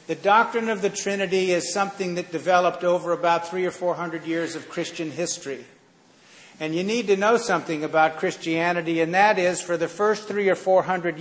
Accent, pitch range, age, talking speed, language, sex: American, 155-185 Hz, 50-69, 200 wpm, English, male